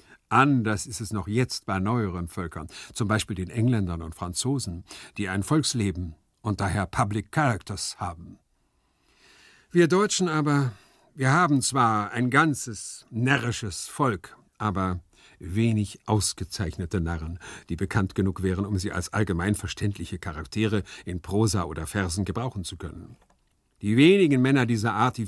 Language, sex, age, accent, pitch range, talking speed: German, male, 50-69, German, 95-115 Hz, 140 wpm